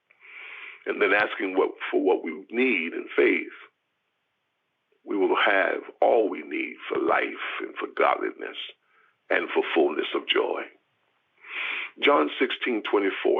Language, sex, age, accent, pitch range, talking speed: English, male, 50-69, American, 355-425 Hz, 125 wpm